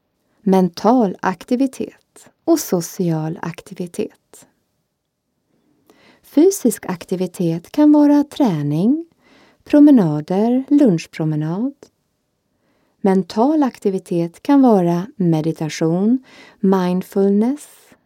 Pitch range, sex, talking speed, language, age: 175-255 Hz, female, 60 wpm, Swedish, 30-49